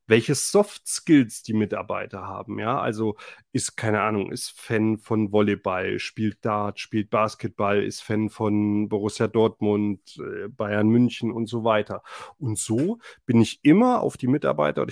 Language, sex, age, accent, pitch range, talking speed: German, male, 30-49, German, 110-140 Hz, 150 wpm